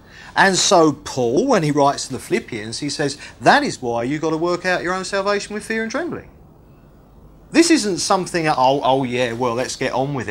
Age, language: 40-59, English